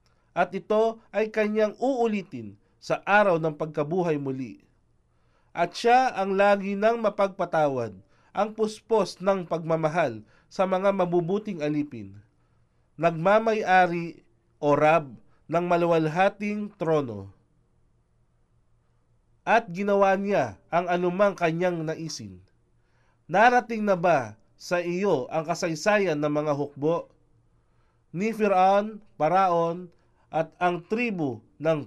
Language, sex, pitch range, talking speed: Filipino, male, 145-200 Hz, 100 wpm